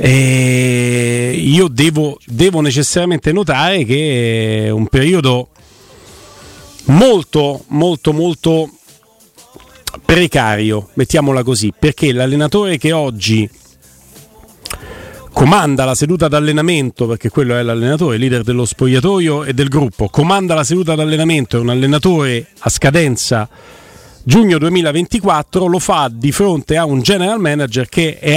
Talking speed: 120 wpm